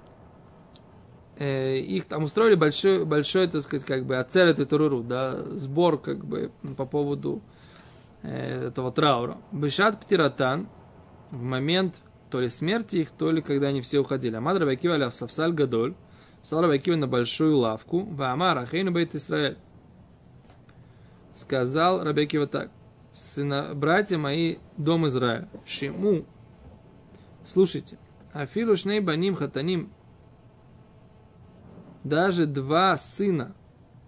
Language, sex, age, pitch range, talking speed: Russian, male, 20-39, 135-175 Hz, 110 wpm